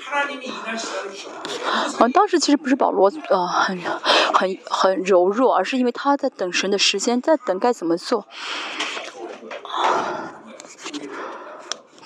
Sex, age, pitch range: female, 30-49, 220-325 Hz